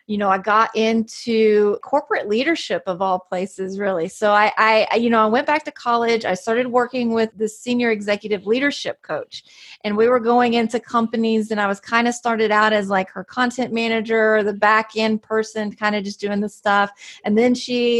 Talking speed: 205 wpm